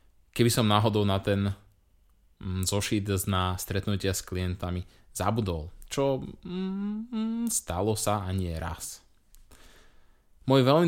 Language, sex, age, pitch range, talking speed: Slovak, male, 20-39, 90-115 Hz, 100 wpm